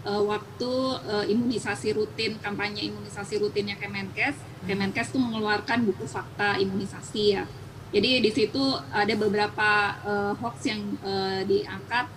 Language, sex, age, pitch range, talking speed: Indonesian, female, 20-39, 200-240 Hz, 125 wpm